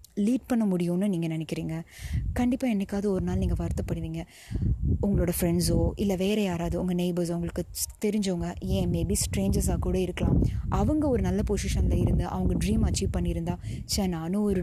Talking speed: 150 wpm